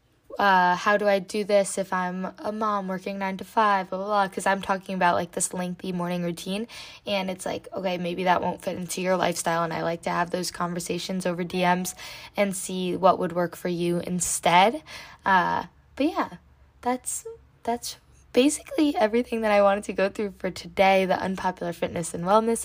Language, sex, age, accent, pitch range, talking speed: English, female, 10-29, American, 180-215 Hz, 195 wpm